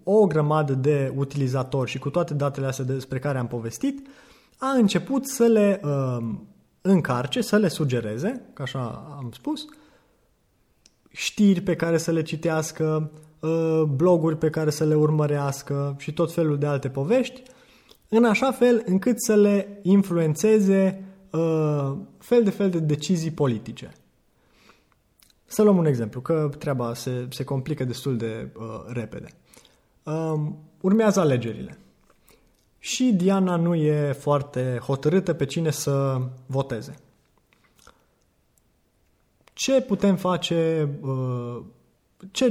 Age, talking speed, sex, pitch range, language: 20-39, 120 wpm, male, 135-195 Hz, Romanian